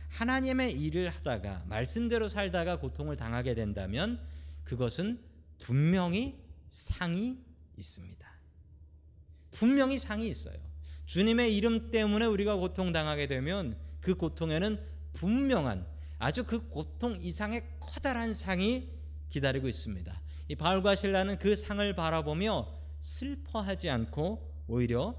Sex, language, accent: male, Korean, native